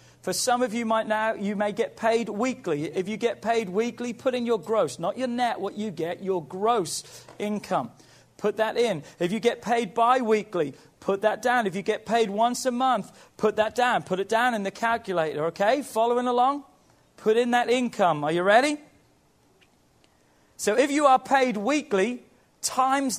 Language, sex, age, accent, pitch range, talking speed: English, male, 40-59, British, 185-235 Hz, 190 wpm